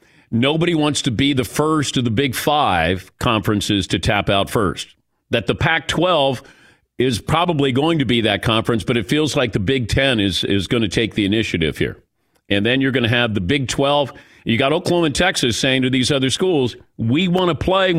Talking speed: 215 wpm